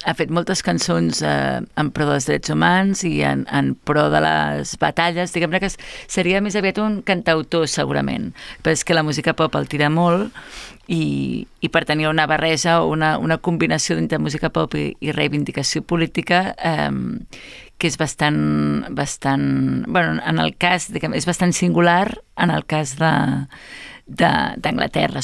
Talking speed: 165 wpm